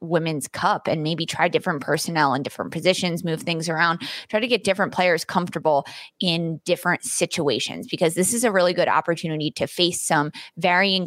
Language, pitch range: English, 165-210 Hz